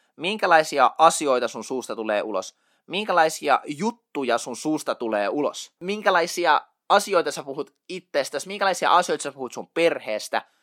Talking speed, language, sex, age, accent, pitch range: 130 wpm, Finnish, male, 20-39, native, 140-190 Hz